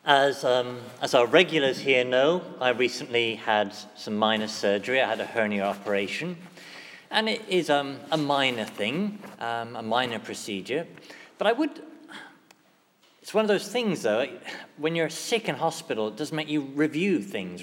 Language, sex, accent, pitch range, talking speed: English, male, British, 125-180 Hz, 165 wpm